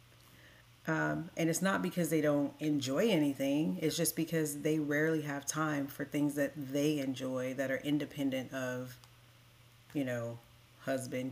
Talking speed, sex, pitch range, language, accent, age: 150 wpm, female, 140-170 Hz, English, American, 40-59